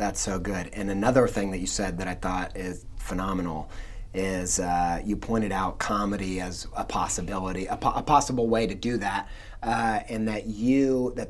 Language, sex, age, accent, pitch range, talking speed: English, male, 30-49, American, 105-130 Hz, 190 wpm